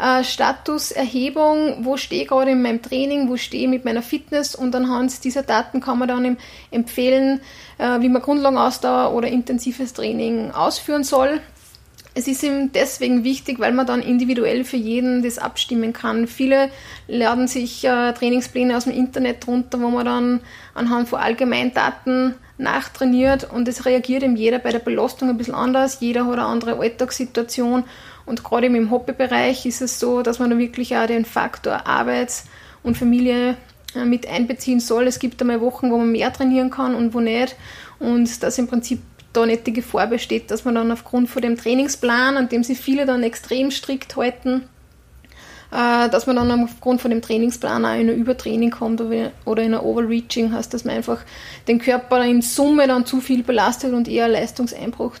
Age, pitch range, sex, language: 30-49, 235-260 Hz, female, German